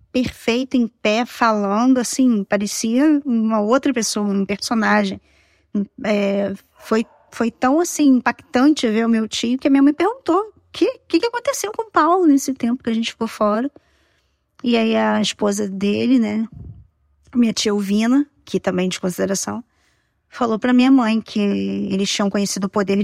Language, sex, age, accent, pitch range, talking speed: Portuguese, female, 20-39, Brazilian, 200-245 Hz, 165 wpm